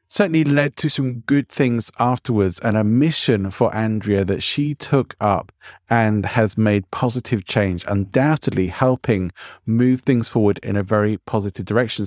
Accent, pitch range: British, 105-135 Hz